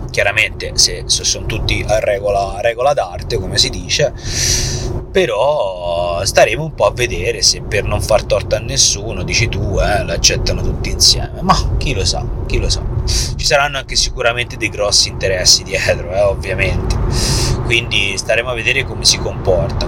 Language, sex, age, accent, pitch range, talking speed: Italian, male, 30-49, native, 105-135 Hz, 165 wpm